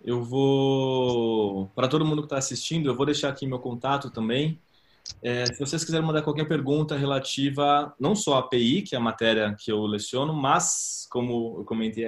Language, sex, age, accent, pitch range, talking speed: Portuguese, male, 20-39, Brazilian, 115-135 Hz, 190 wpm